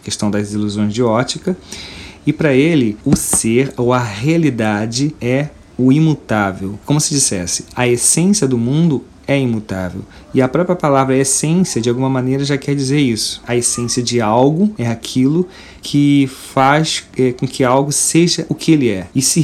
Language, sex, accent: Portuguese, male, Brazilian